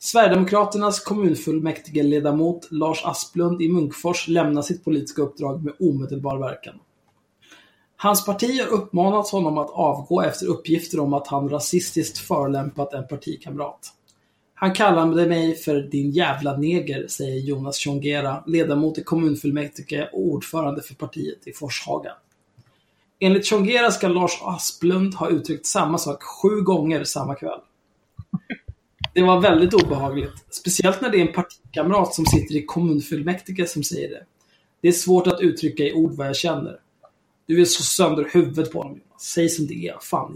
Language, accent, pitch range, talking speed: Swedish, native, 145-180 Hz, 150 wpm